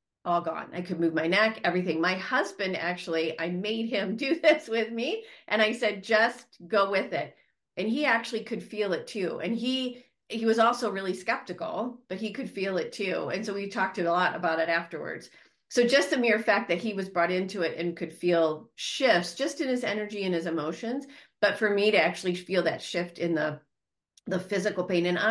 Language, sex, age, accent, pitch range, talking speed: English, female, 40-59, American, 165-220 Hz, 215 wpm